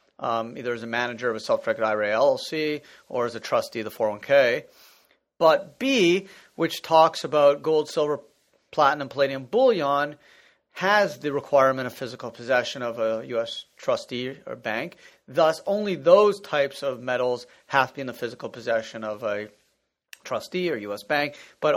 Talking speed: 165 wpm